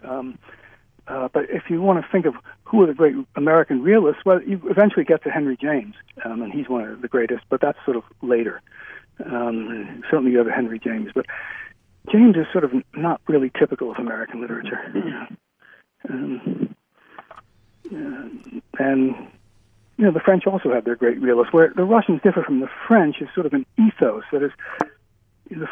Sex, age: male, 60-79